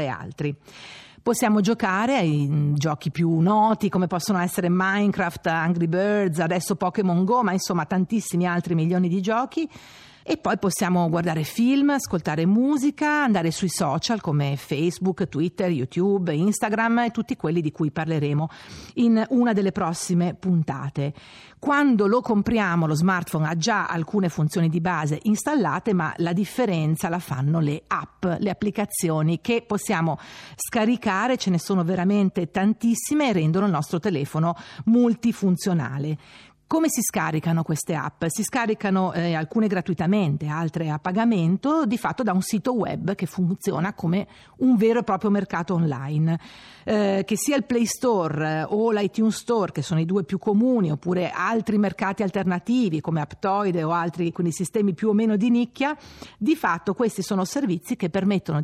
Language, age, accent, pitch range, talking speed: Italian, 50-69, native, 165-220 Hz, 150 wpm